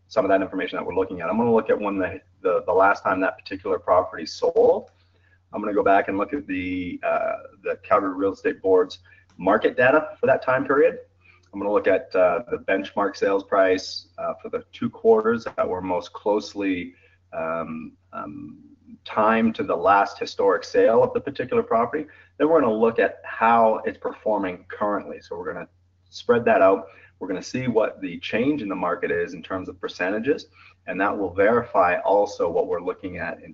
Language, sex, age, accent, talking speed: English, male, 30-49, American, 200 wpm